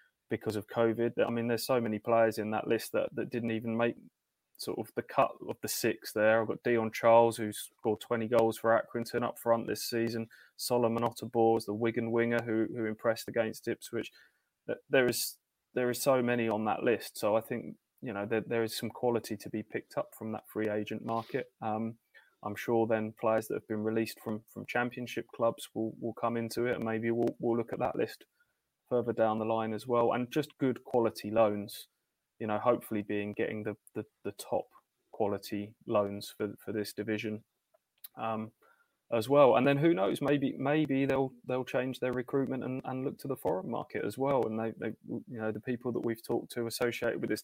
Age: 20-39